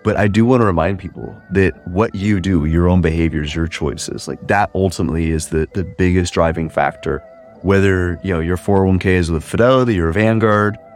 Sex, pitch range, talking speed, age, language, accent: male, 85-110 Hz, 190 wpm, 30-49, English, American